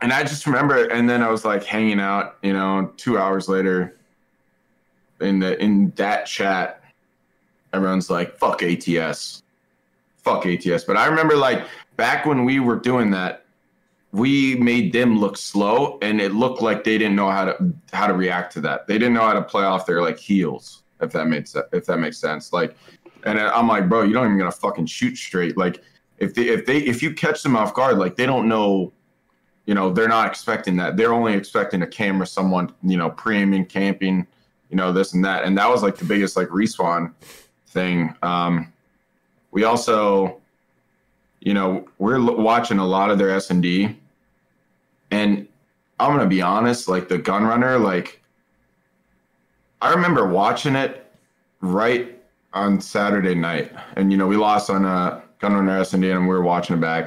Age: 20-39